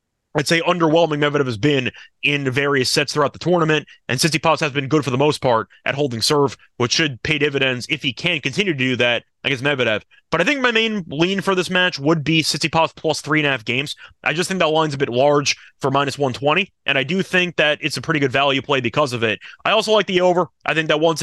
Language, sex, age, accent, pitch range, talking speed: English, male, 30-49, American, 140-170 Hz, 250 wpm